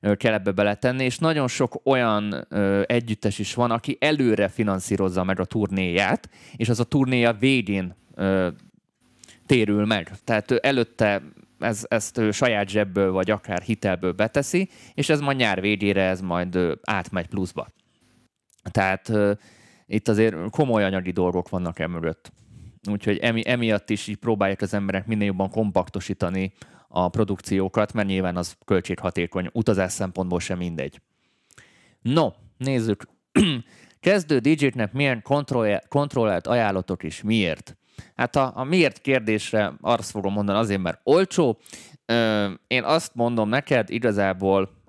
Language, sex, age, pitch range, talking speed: Hungarian, male, 20-39, 95-120 Hz, 135 wpm